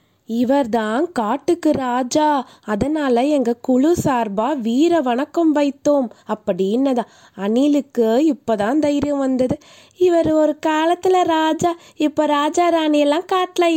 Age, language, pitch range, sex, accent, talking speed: 20-39, Tamil, 225-310 Hz, female, native, 105 wpm